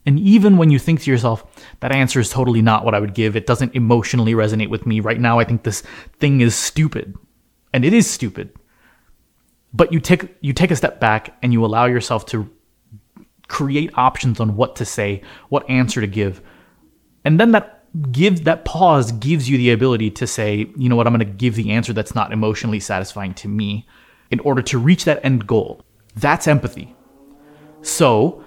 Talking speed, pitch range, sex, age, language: 200 wpm, 110-150 Hz, male, 30-49, English